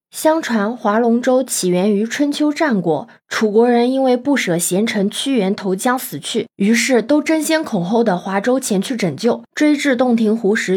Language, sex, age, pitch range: Chinese, female, 20-39, 195-255 Hz